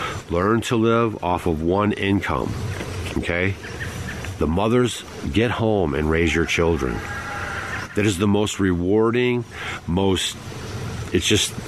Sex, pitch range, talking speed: male, 95-135 Hz, 125 wpm